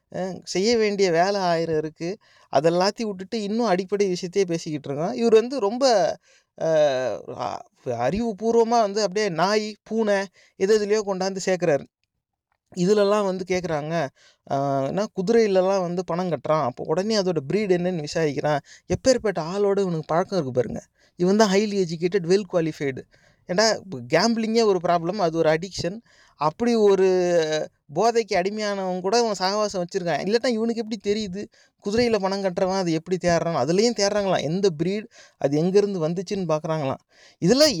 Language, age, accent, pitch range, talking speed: Tamil, 30-49, native, 175-225 Hz, 135 wpm